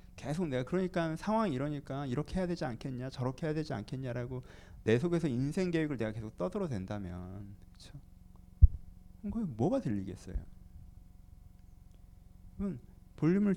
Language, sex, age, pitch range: Korean, male, 40-59, 90-145 Hz